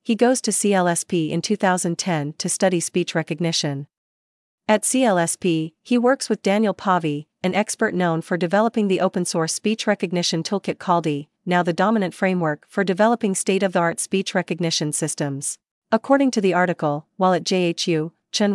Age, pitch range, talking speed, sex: 40-59, 165-200 Hz, 150 wpm, female